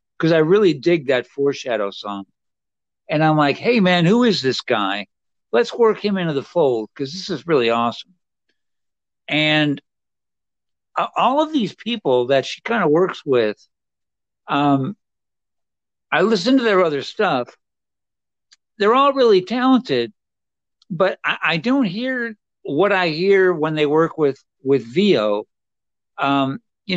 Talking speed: 140 wpm